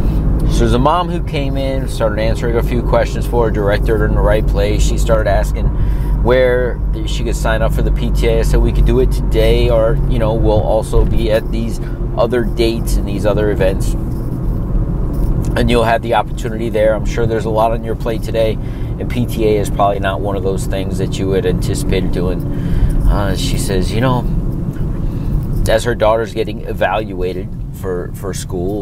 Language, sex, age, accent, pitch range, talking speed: English, male, 30-49, American, 100-135 Hz, 195 wpm